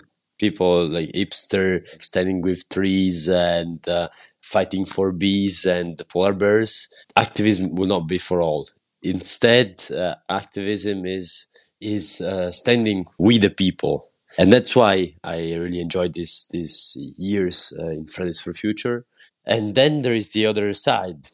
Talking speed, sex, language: 145 wpm, male, English